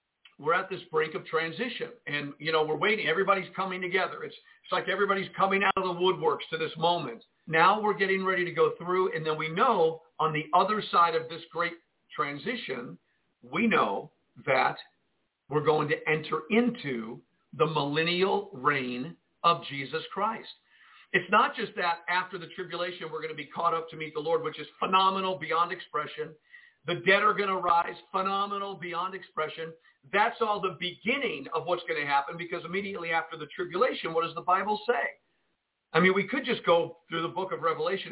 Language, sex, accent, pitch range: English, male, American, 160-195 Hz